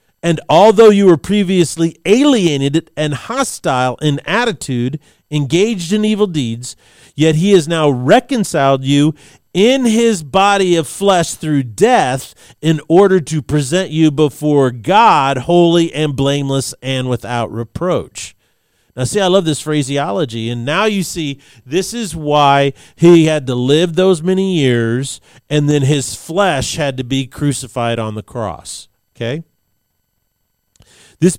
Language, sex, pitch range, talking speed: English, male, 130-180 Hz, 140 wpm